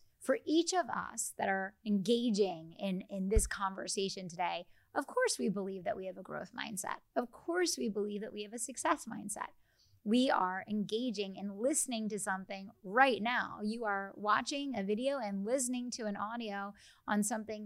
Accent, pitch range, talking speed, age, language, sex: American, 200-250 Hz, 180 wpm, 30-49, English, female